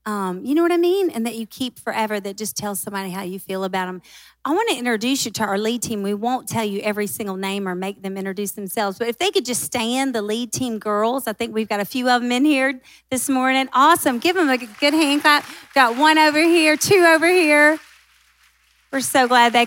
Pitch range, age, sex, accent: 200-260 Hz, 40-59, female, American